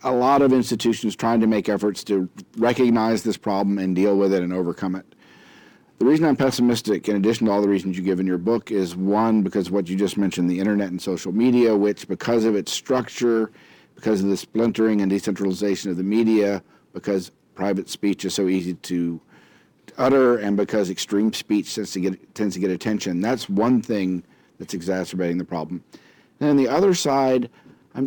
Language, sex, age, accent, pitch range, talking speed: English, male, 50-69, American, 95-120 Hz, 195 wpm